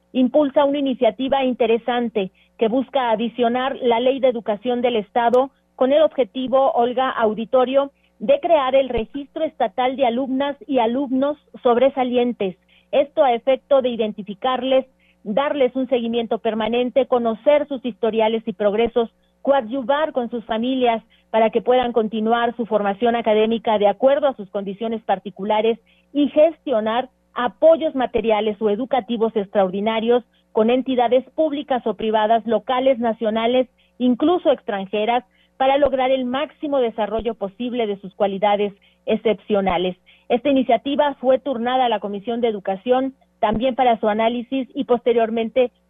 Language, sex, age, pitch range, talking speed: Spanish, female, 40-59, 220-265 Hz, 130 wpm